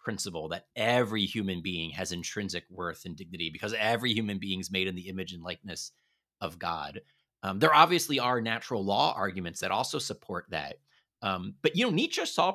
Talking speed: 190 wpm